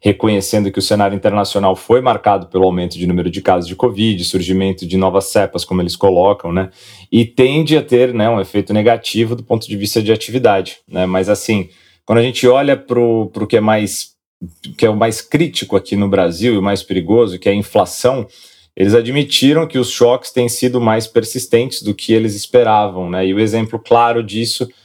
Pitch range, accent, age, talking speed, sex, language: 100-120 Hz, Brazilian, 30-49, 200 wpm, male, Portuguese